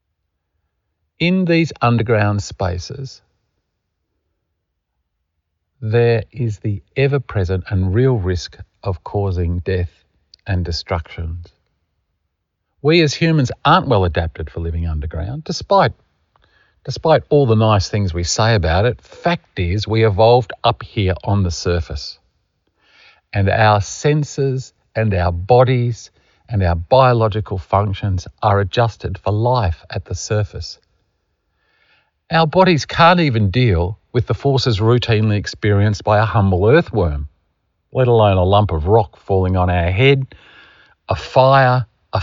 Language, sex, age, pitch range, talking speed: English, male, 50-69, 85-115 Hz, 125 wpm